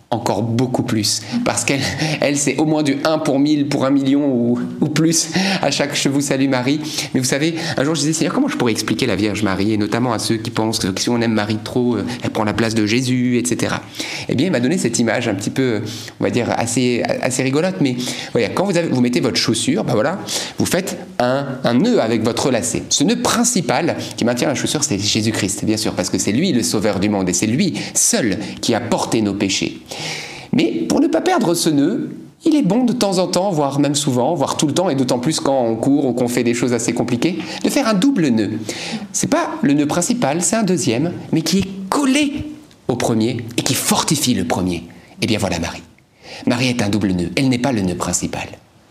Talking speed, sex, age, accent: 245 wpm, male, 30-49, French